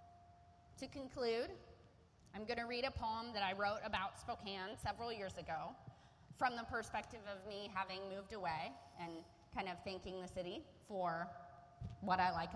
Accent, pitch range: American, 170-235 Hz